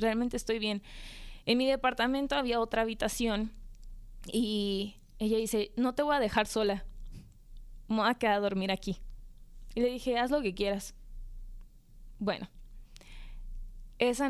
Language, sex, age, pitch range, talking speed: Spanish, female, 20-39, 215-265 Hz, 140 wpm